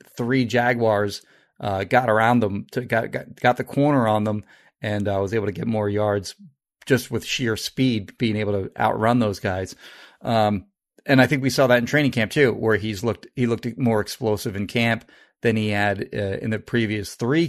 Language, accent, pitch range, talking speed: English, American, 105-125 Hz, 205 wpm